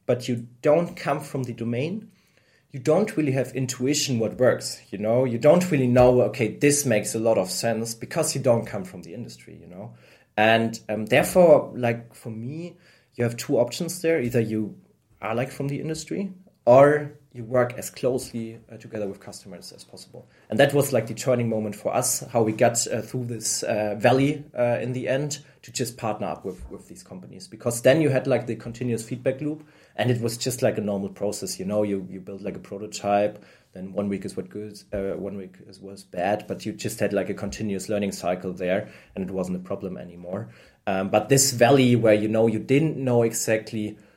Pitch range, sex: 110-140 Hz, male